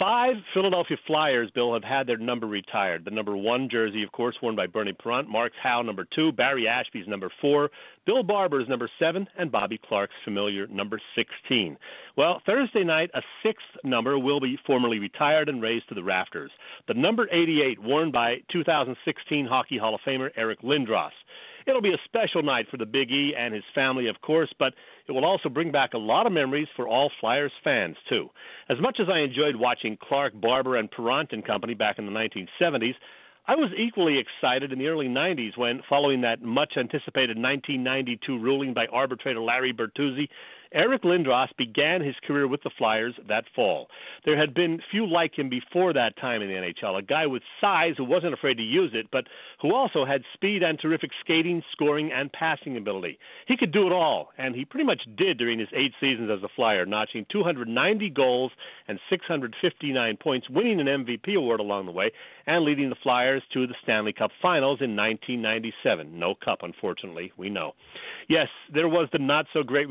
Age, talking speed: 40-59, 190 wpm